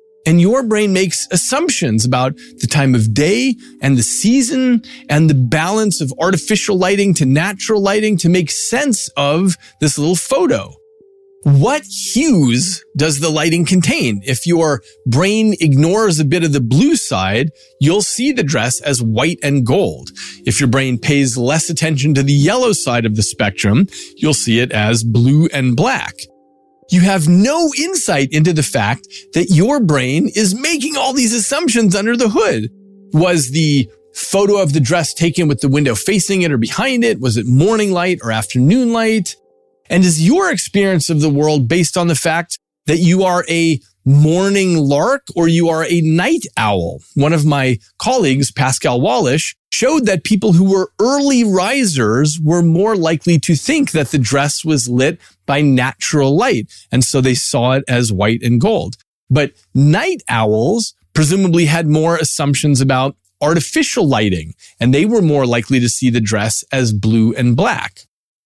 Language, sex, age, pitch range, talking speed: English, male, 40-59, 130-195 Hz, 170 wpm